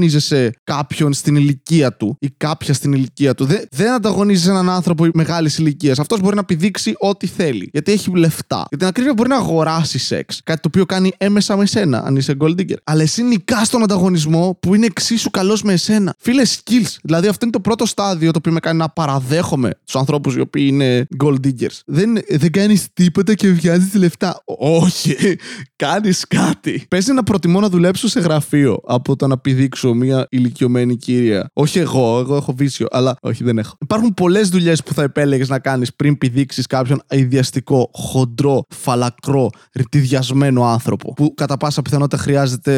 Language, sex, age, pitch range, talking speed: Greek, male, 20-39, 130-180 Hz, 180 wpm